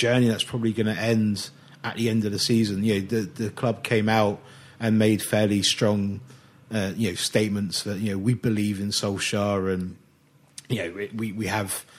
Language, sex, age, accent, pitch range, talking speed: English, male, 30-49, British, 105-135 Hz, 200 wpm